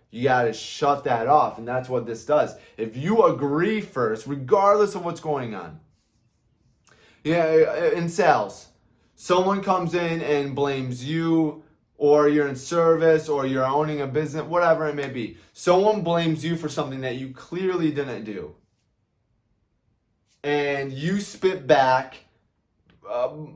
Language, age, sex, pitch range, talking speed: English, 20-39, male, 125-165 Hz, 150 wpm